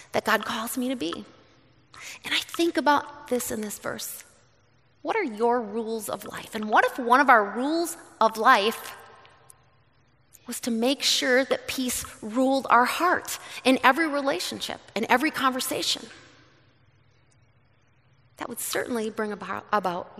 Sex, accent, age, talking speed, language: female, American, 30-49, 150 wpm, English